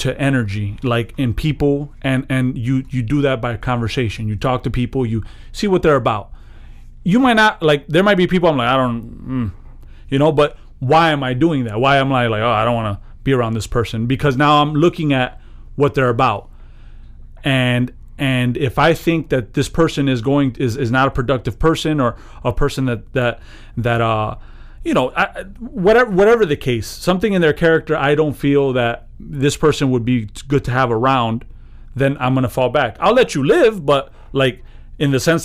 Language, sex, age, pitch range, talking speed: English, male, 30-49, 120-150 Hz, 210 wpm